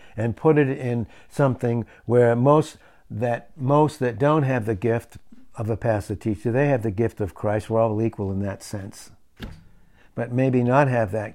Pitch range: 105-140 Hz